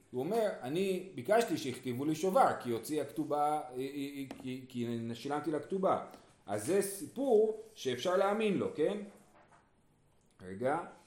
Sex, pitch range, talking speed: male, 150-235 Hz, 125 wpm